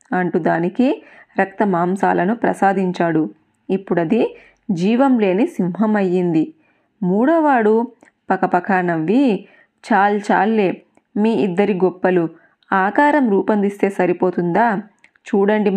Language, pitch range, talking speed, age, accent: Telugu, 180-220 Hz, 85 wpm, 20-39, native